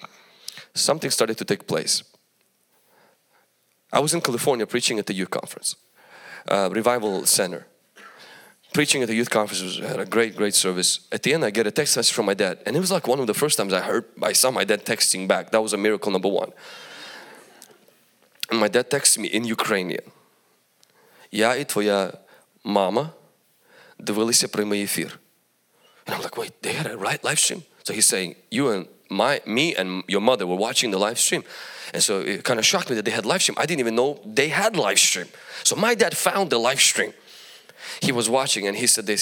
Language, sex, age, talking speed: English, male, 20-39, 200 wpm